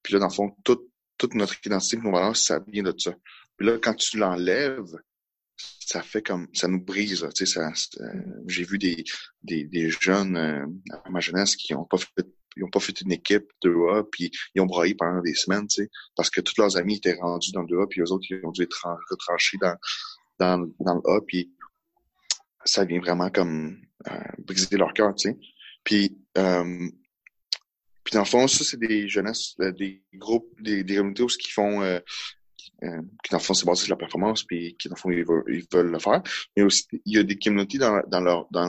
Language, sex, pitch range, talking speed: French, male, 85-100 Hz, 230 wpm